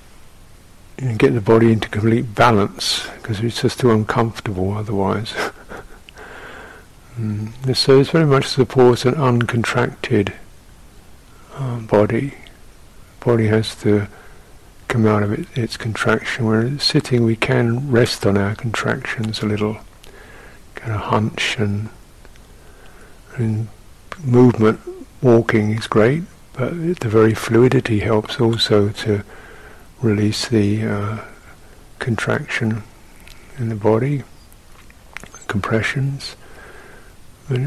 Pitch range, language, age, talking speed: 105-125 Hz, English, 60-79, 105 wpm